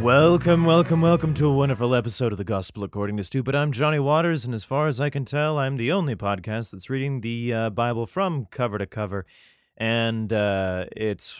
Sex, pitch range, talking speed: male, 95-135 Hz, 205 wpm